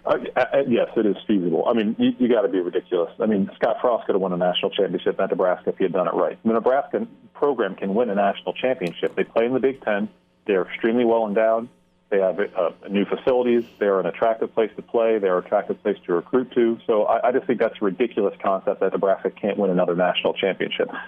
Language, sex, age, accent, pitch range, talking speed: English, male, 40-59, American, 105-130 Hz, 240 wpm